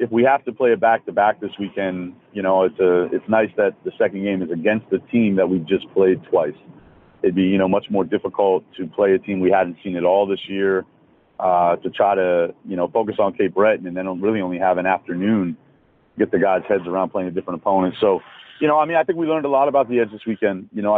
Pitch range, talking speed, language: 90-105 Hz, 265 wpm, English